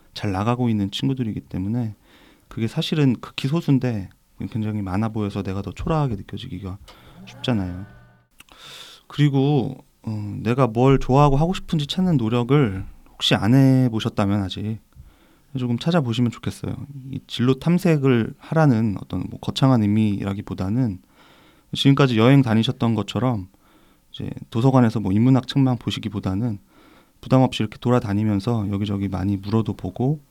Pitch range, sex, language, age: 100-130 Hz, male, Korean, 30-49